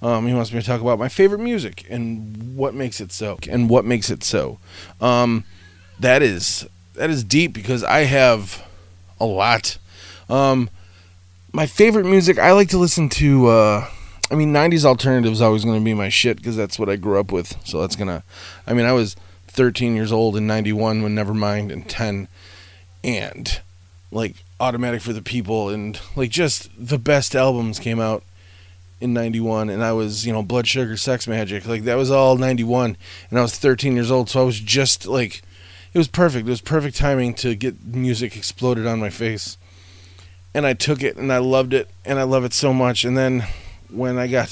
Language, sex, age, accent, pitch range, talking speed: English, male, 20-39, American, 95-130 Hz, 200 wpm